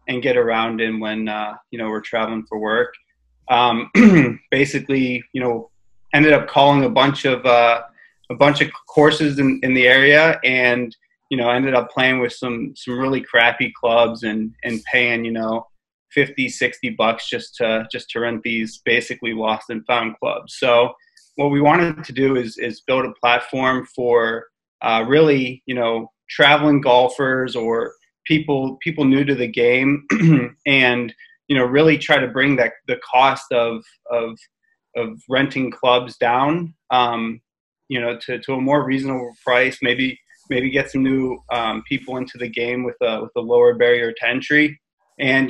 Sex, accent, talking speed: male, American, 175 wpm